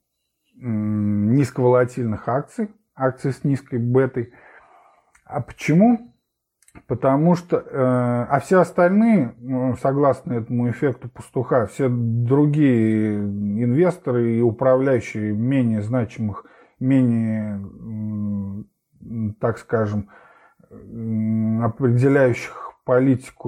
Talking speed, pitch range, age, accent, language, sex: 75 wpm, 115-145 Hz, 20-39, native, Russian, male